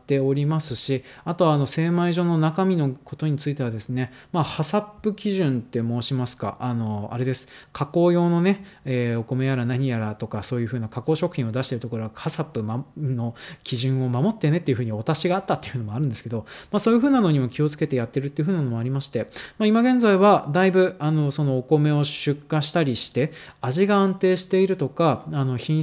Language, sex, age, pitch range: Japanese, male, 20-39, 125-175 Hz